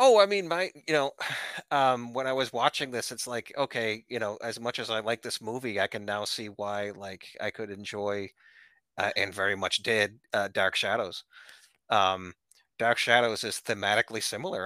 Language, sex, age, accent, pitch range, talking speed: English, male, 30-49, American, 95-120 Hz, 190 wpm